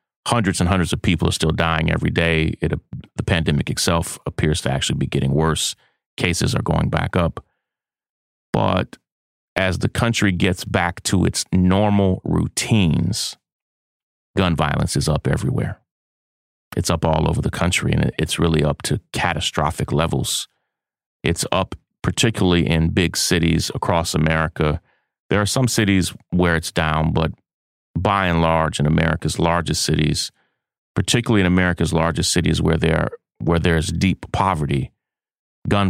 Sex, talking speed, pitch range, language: male, 145 wpm, 80-95 Hz, English